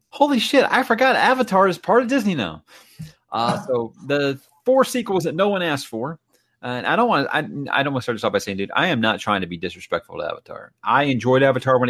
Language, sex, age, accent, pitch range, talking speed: English, male, 30-49, American, 115-175 Hz, 220 wpm